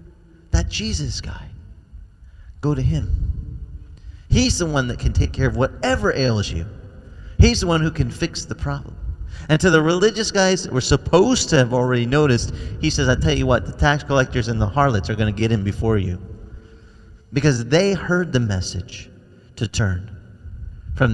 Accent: American